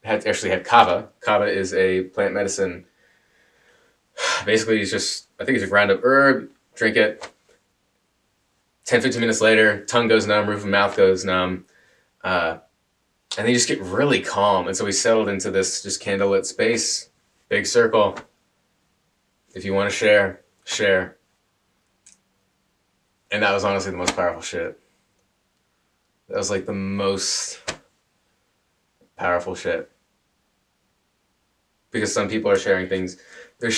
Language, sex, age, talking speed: English, male, 20-39, 140 wpm